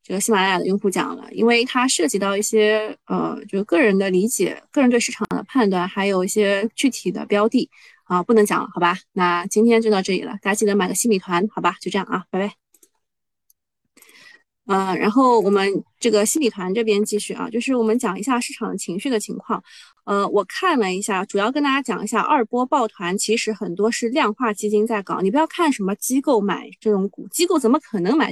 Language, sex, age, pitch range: Chinese, female, 20-39, 195-240 Hz